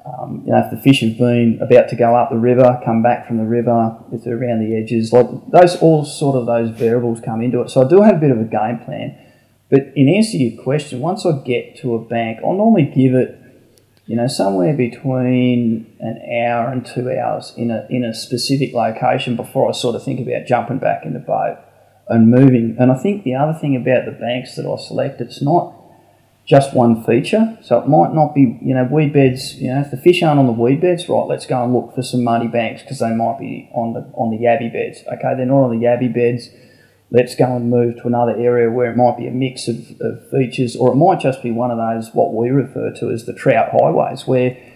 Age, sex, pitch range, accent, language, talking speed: 20-39, male, 120-135 Hz, Australian, English, 245 wpm